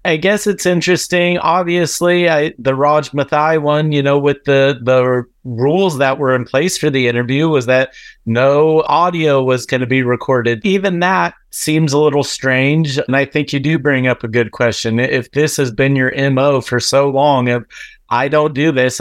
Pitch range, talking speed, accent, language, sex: 130-150 Hz, 190 wpm, American, English, male